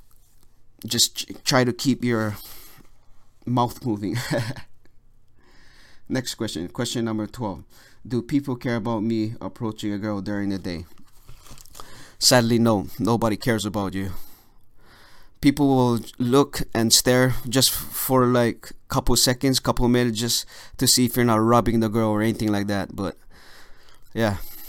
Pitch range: 105-120 Hz